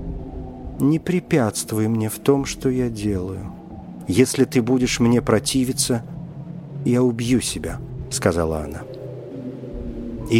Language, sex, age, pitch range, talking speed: Russian, male, 50-69, 115-150 Hz, 110 wpm